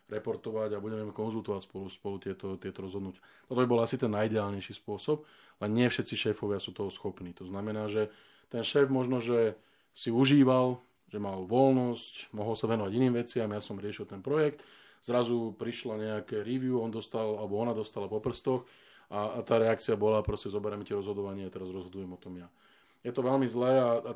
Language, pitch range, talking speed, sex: Slovak, 105-120 Hz, 195 wpm, male